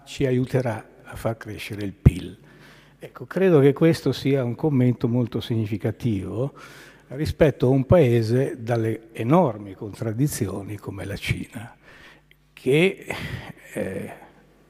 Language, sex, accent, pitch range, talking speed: Italian, male, native, 110-135 Hz, 115 wpm